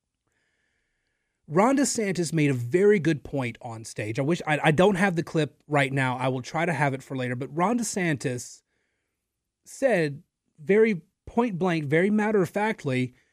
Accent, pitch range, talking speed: American, 150-210 Hz, 170 wpm